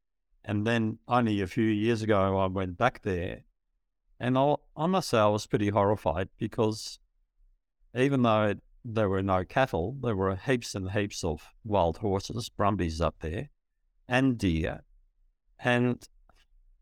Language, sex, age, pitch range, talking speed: English, male, 60-79, 95-120 Hz, 145 wpm